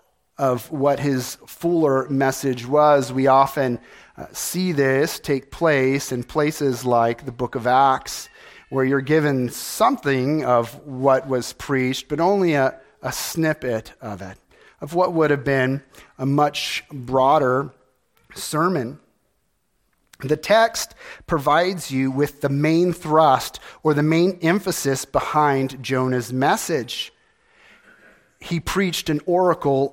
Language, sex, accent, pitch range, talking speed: English, male, American, 130-165 Hz, 125 wpm